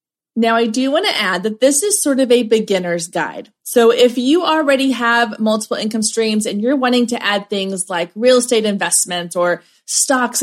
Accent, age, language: American, 30-49, English